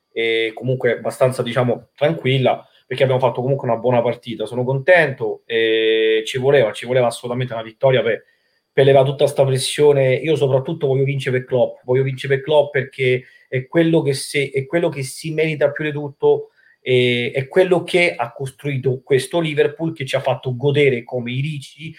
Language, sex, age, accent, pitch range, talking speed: Italian, male, 30-49, native, 125-150 Hz, 185 wpm